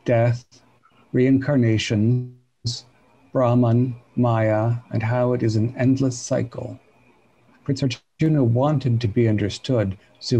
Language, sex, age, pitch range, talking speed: English, male, 50-69, 115-130 Hz, 105 wpm